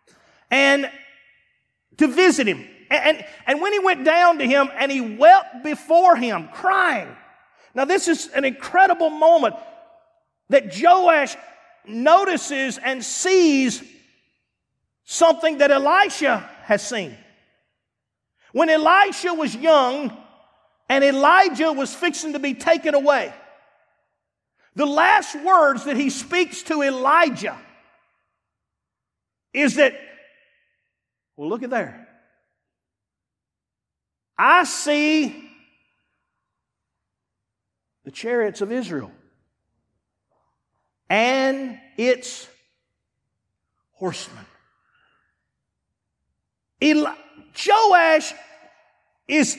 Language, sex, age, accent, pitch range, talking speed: English, male, 40-59, American, 270-345 Hz, 85 wpm